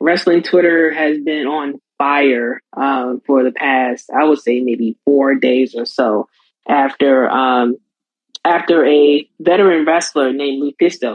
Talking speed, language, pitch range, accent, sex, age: 140 wpm, English, 140-180 Hz, American, female, 20-39